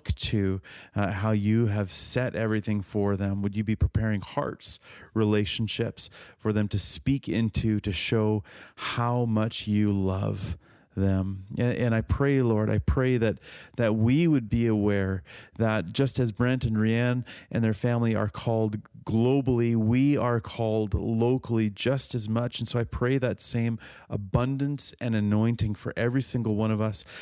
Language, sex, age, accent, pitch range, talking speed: English, male, 30-49, American, 105-120 Hz, 165 wpm